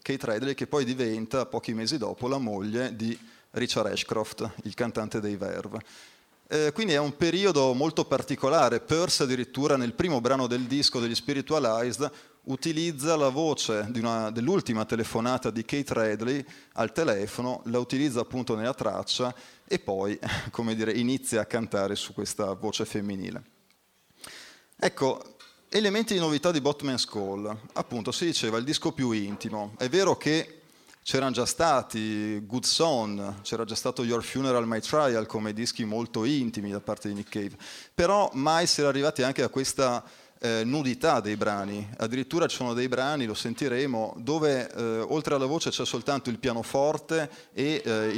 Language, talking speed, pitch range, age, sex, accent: Italian, 160 wpm, 110-145 Hz, 30-49, male, native